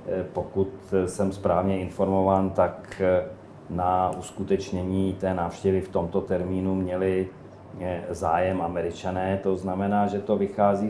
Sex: male